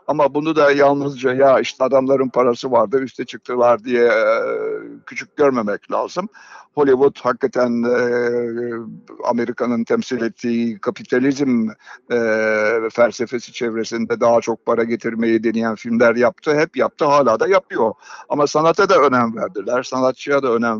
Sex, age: male, 60-79